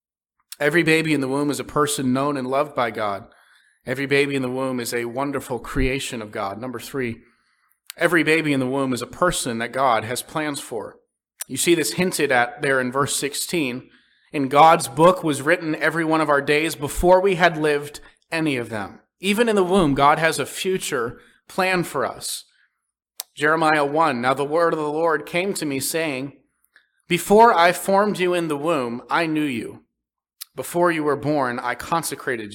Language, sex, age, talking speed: English, male, 30-49, 190 wpm